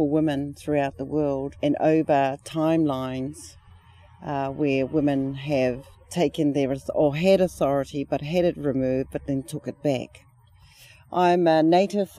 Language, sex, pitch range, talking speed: English, female, 140-170 Hz, 140 wpm